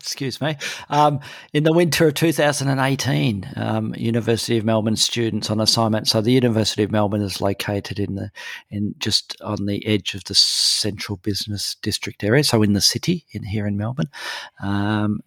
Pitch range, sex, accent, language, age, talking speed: 105-125 Hz, male, Australian, English, 40-59, 175 wpm